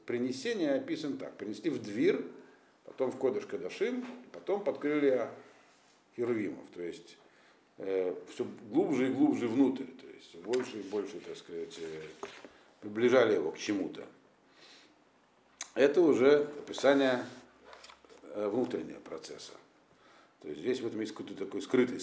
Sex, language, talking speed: male, Russian, 125 wpm